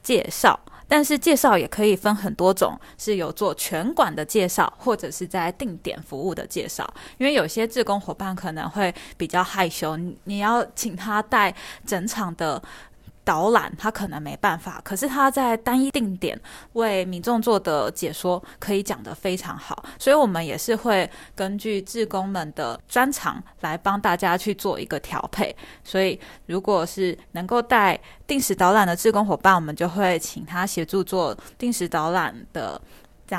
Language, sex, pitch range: Chinese, female, 175-220 Hz